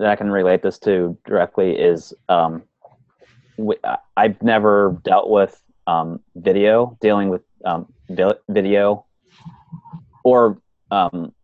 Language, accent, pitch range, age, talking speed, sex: English, American, 90-125 Hz, 30-49, 110 wpm, male